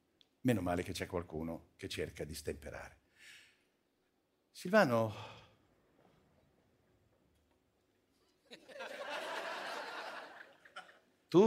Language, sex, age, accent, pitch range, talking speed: Italian, male, 60-79, native, 110-175 Hz, 60 wpm